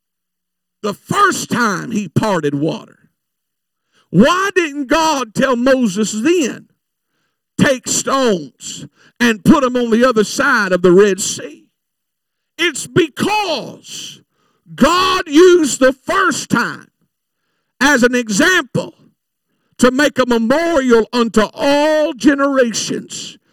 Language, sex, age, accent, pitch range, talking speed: English, male, 50-69, American, 210-270 Hz, 105 wpm